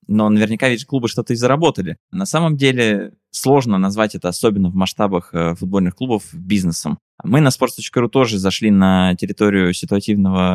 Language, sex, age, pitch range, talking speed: Russian, male, 20-39, 95-120 Hz, 160 wpm